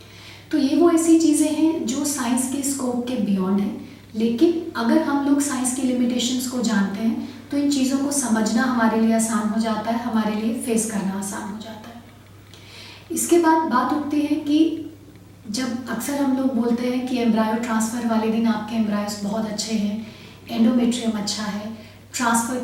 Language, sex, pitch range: Hindi, female, 220-260 Hz